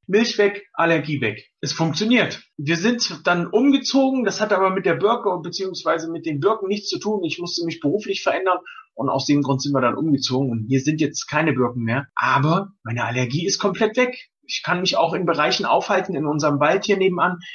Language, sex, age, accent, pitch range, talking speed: German, male, 30-49, German, 140-195 Hz, 210 wpm